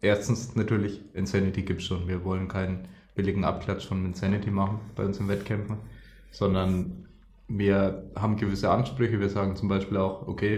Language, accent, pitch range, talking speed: German, German, 100-115 Hz, 165 wpm